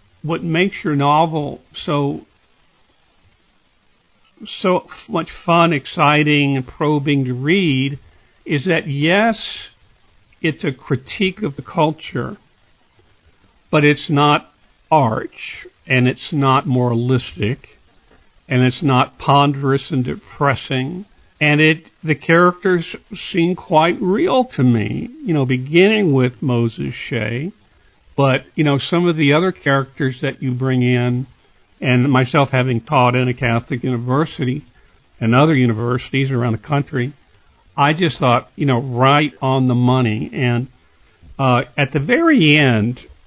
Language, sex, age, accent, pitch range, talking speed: English, male, 60-79, American, 125-160 Hz, 130 wpm